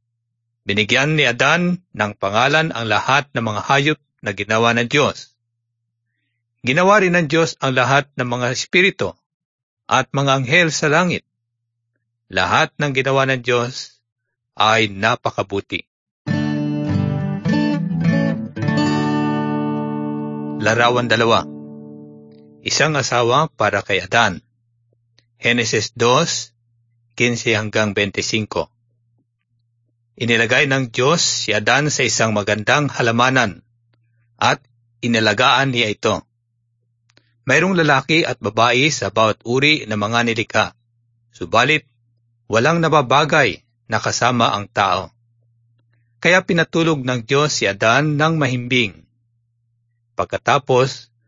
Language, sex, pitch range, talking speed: Arabic, male, 115-135 Hz, 100 wpm